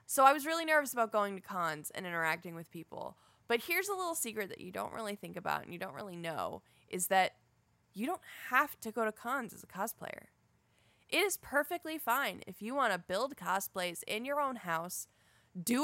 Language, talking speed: English, 210 wpm